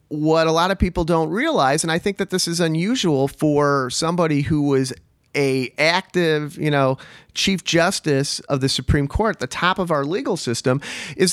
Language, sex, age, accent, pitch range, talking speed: English, male, 40-59, American, 135-165 Hz, 185 wpm